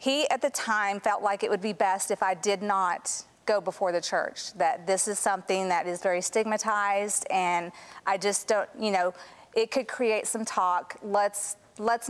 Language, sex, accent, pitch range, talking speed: English, female, American, 180-220 Hz, 195 wpm